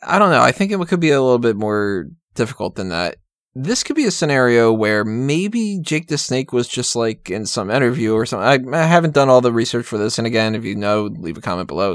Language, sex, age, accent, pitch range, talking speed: English, male, 20-39, American, 110-140 Hz, 255 wpm